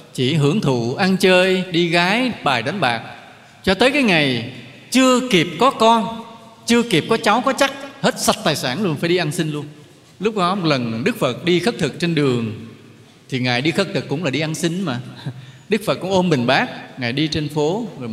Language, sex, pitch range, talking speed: Vietnamese, male, 125-185 Hz, 220 wpm